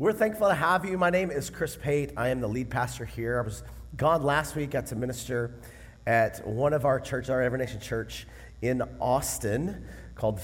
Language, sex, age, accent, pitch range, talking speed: English, male, 30-49, American, 110-155 Hz, 205 wpm